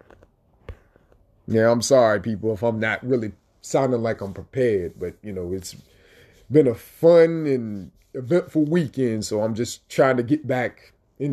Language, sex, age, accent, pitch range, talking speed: English, male, 30-49, American, 100-140 Hz, 160 wpm